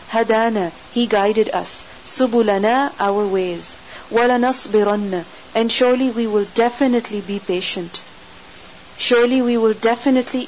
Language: English